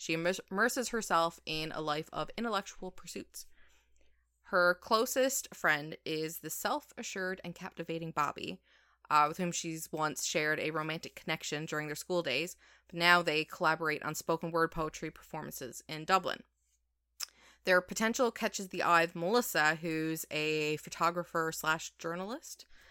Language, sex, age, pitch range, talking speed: English, female, 20-39, 160-190 Hz, 140 wpm